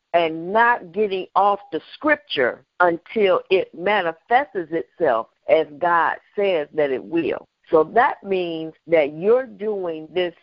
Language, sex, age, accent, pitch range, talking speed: English, female, 50-69, American, 180-240 Hz, 130 wpm